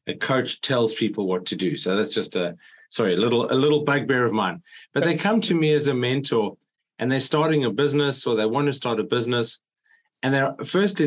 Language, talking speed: English, 230 wpm